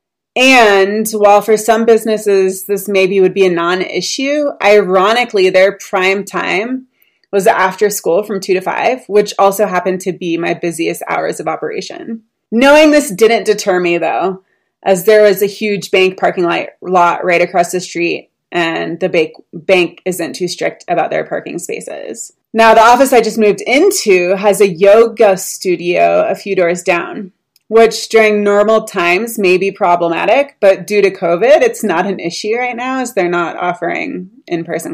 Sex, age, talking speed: female, 20-39, 165 wpm